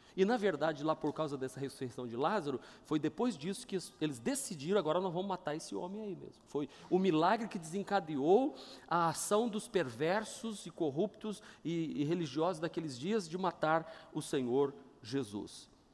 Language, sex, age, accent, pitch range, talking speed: Portuguese, male, 40-59, Brazilian, 135-190 Hz, 170 wpm